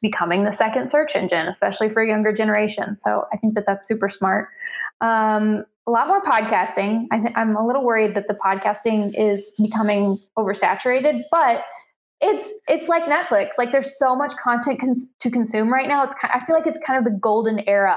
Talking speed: 200 wpm